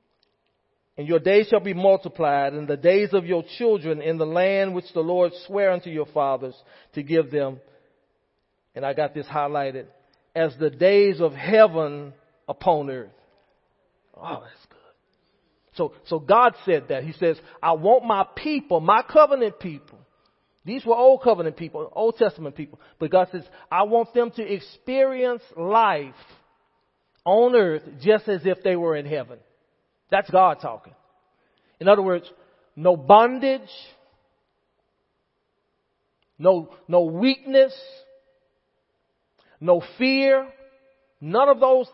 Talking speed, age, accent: 135 wpm, 40-59, American